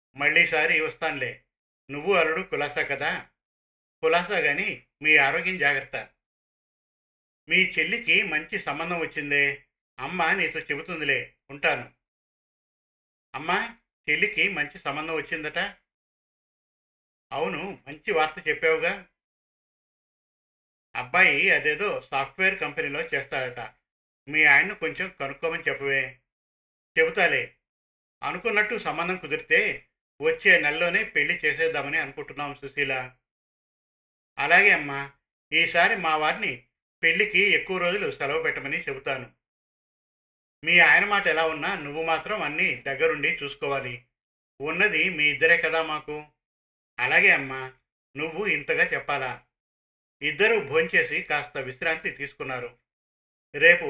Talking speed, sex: 95 wpm, male